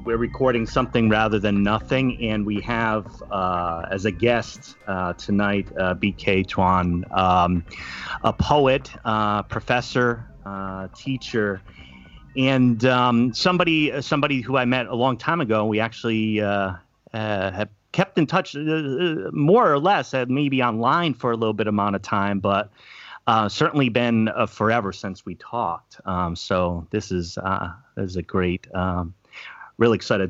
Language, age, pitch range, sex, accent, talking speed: English, 30-49, 95-120 Hz, male, American, 155 wpm